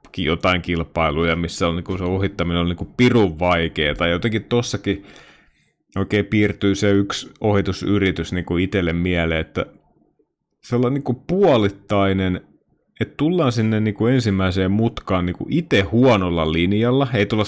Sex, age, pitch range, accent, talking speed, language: male, 30-49, 90-115 Hz, native, 135 wpm, Finnish